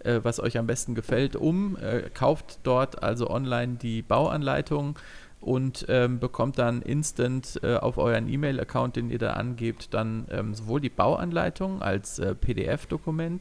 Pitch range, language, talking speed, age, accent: 115-135 Hz, German, 150 wpm, 40-59, German